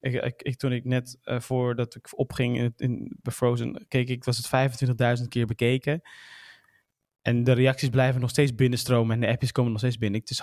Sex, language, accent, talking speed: male, Dutch, Dutch, 220 wpm